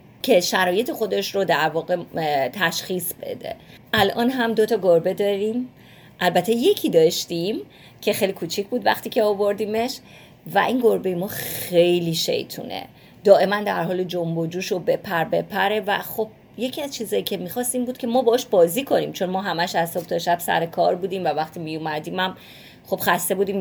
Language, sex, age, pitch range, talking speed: Persian, female, 30-49, 165-210 Hz, 170 wpm